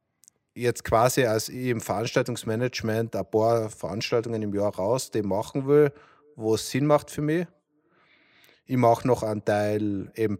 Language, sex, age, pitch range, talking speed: German, male, 30-49, 100-125 Hz, 155 wpm